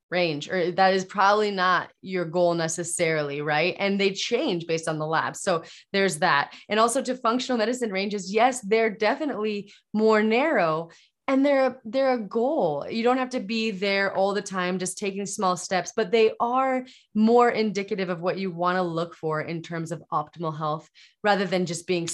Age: 20-39